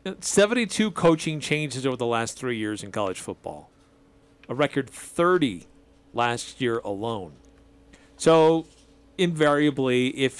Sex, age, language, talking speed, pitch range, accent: male, 40-59, English, 115 wpm, 120-155 Hz, American